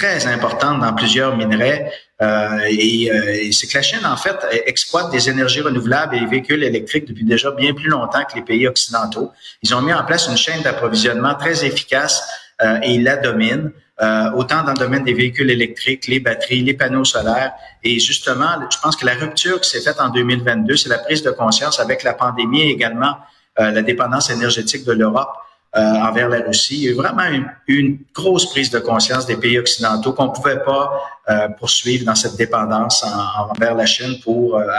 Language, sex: French, male